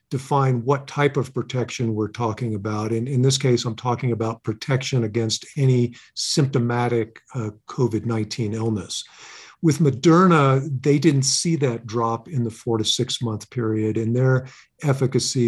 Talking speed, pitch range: 150 wpm, 115-140 Hz